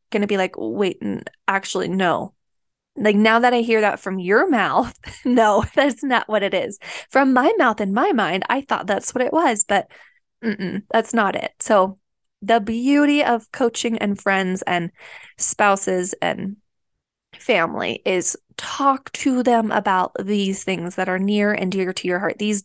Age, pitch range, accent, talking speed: 20-39, 195-245 Hz, American, 180 wpm